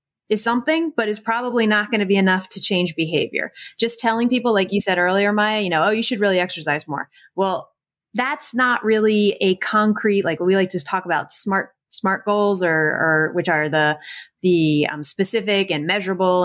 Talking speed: 195 wpm